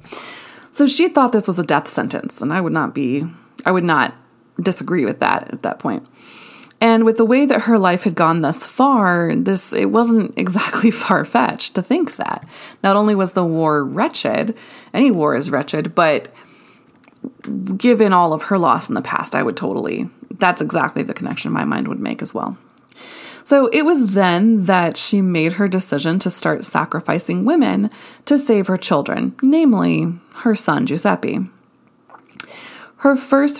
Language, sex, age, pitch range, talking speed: English, female, 20-39, 185-250 Hz, 170 wpm